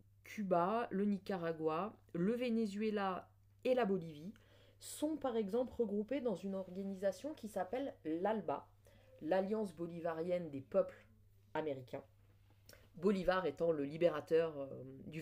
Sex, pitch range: female, 150-225 Hz